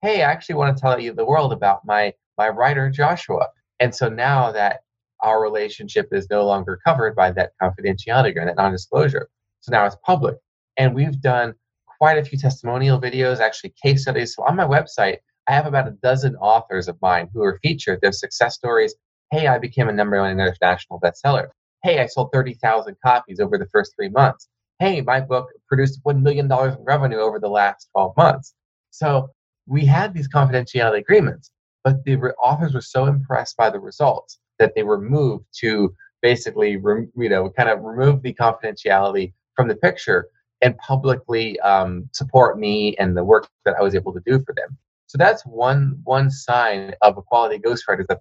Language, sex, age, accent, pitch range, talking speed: English, male, 20-39, American, 110-140 Hz, 190 wpm